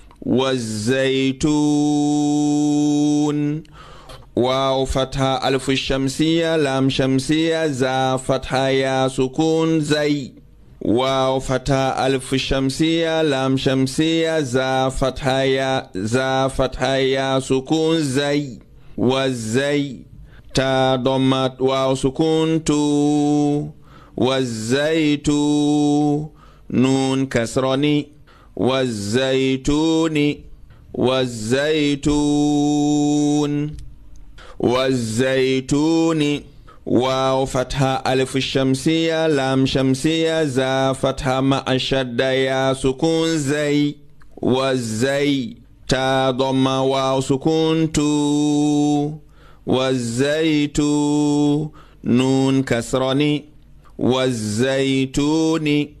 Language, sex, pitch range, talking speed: English, male, 130-150 Hz, 55 wpm